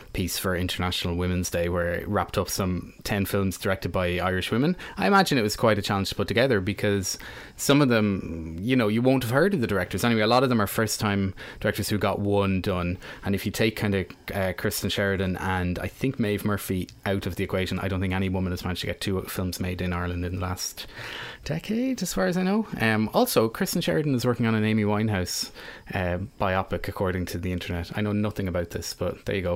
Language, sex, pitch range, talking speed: English, male, 95-110 Hz, 240 wpm